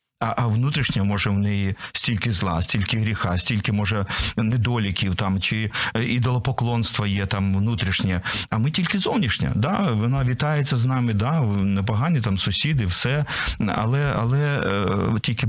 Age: 40-59